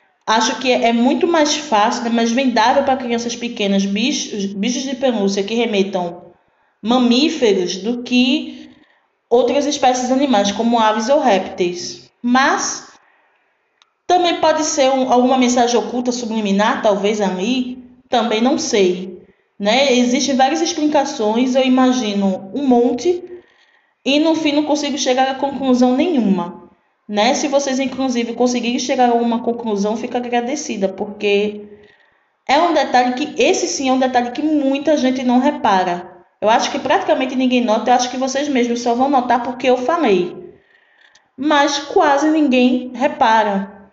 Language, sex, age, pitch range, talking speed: Portuguese, female, 20-39, 225-290 Hz, 145 wpm